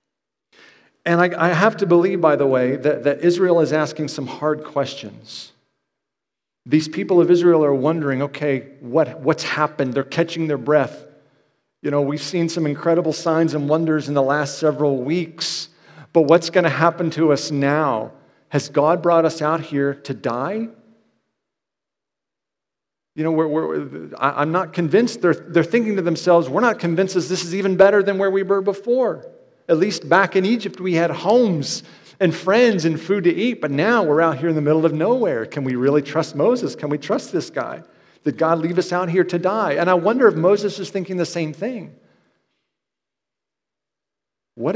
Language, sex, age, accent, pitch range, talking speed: English, male, 50-69, American, 145-180 Hz, 185 wpm